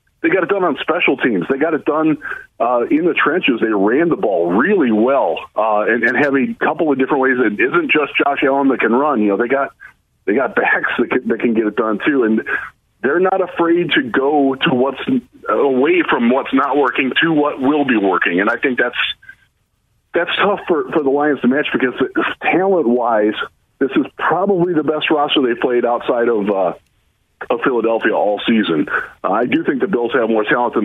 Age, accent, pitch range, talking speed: 40-59, American, 130-180 Hz, 215 wpm